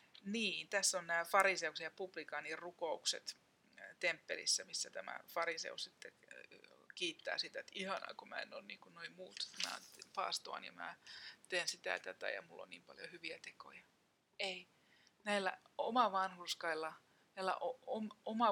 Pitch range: 170-215 Hz